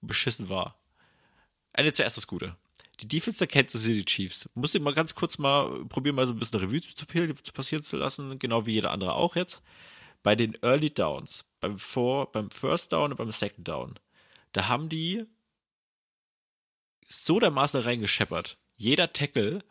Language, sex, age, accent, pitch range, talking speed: German, male, 30-49, German, 105-145 Hz, 185 wpm